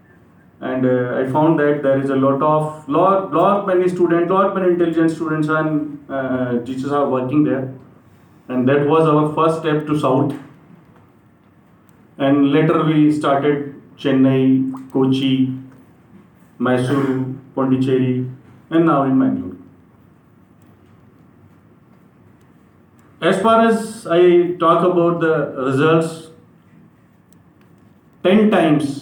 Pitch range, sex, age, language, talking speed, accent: 135-175 Hz, male, 40-59, Kannada, 120 wpm, native